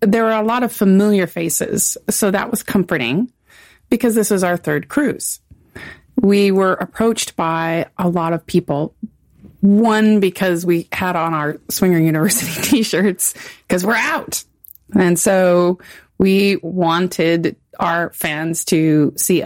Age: 30-49